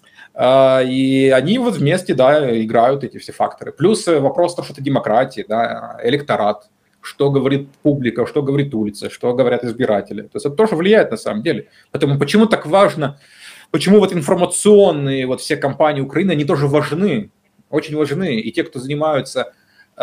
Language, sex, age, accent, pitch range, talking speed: Ukrainian, male, 20-39, native, 120-170 Hz, 165 wpm